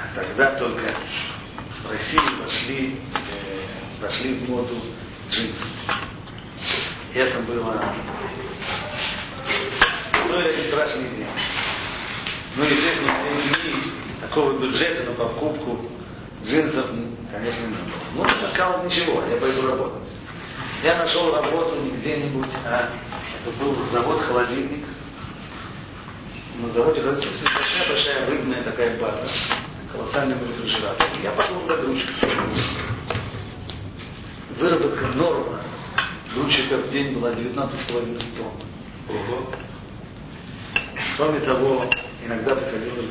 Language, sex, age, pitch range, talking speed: Russian, male, 40-59, 115-135 Hz, 100 wpm